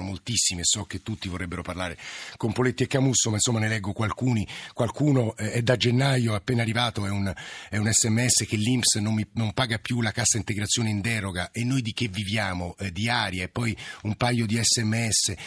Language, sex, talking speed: Italian, male, 205 wpm